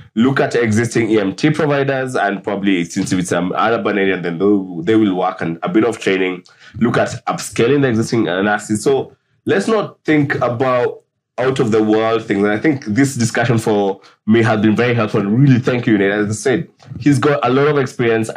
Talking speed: 205 wpm